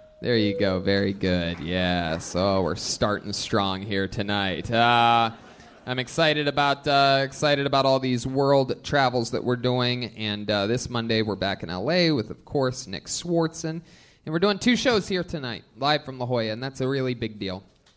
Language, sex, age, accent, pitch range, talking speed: English, male, 20-39, American, 120-165 Hz, 185 wpm